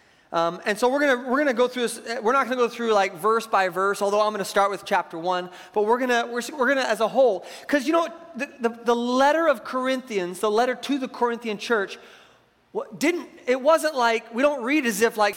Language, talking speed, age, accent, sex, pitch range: English, 255 wpm, 30-49, American, male, 210-270 Hz